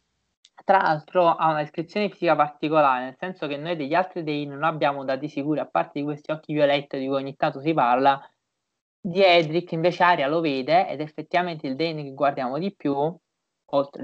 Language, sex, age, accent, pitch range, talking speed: Italian, male, 20-39, native, 145-185 Hz, 190 wpm